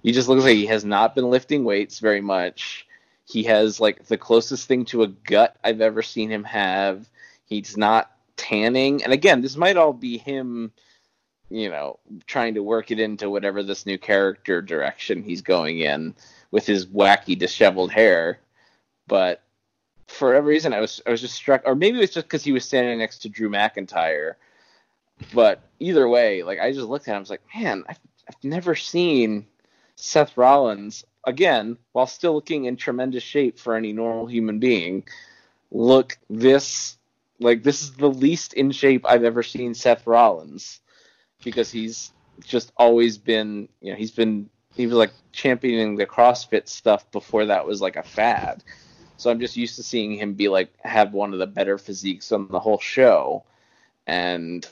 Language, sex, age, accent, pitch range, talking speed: English, male, 20-39, American, 105-125 Hz, 180 wpm